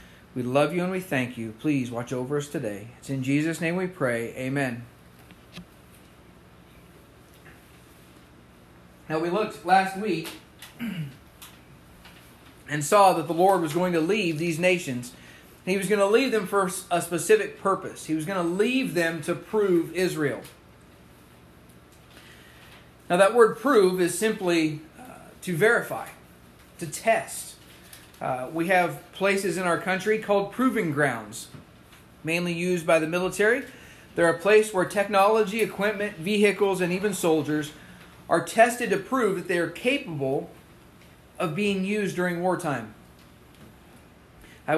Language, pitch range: English, 110-185 Hz